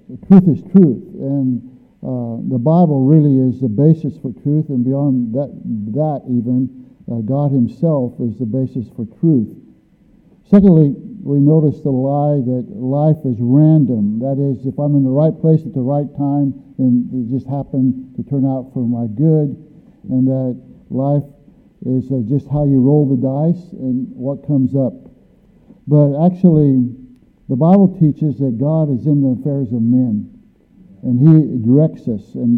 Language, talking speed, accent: English, 170 wpm, American